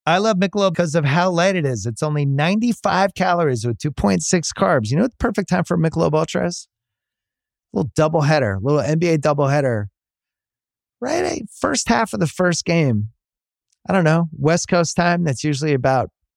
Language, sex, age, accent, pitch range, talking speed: English, male, 30-49, American, 110-170 Hz, 185 wpm